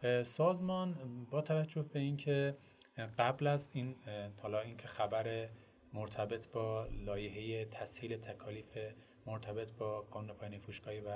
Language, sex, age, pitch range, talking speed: Persian, male, 30-49, 110-155 Hz, 120 wpm